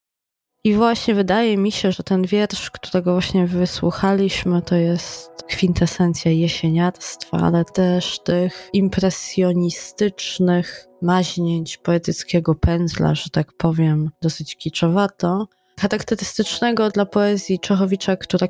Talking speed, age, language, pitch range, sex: 105 wpm, 20-39, Polish, 170-195 Hz, female